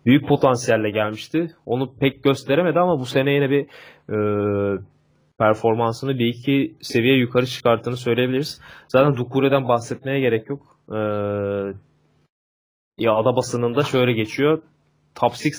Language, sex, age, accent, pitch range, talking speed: Turkish, male, 20-39, native, 110-140 Hz, 120 wpm